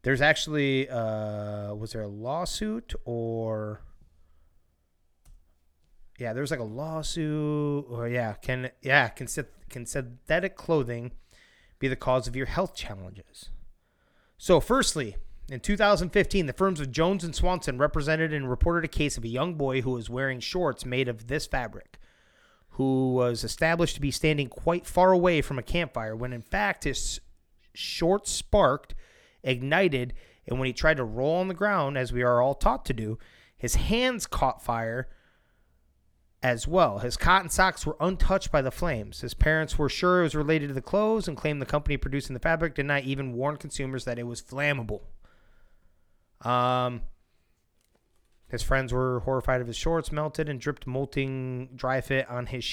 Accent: American